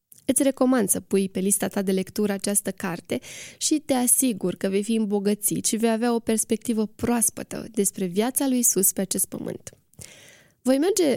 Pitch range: 200-245 Hz